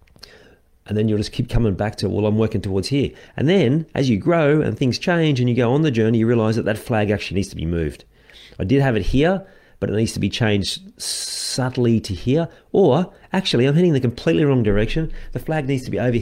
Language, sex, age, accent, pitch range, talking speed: English, male, 40-59, Australian, 85-115 Hz, 240 wpm